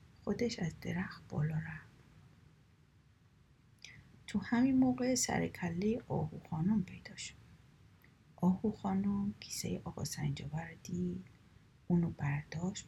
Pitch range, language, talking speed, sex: 150-210 Hz, Persian, 100 wpm, female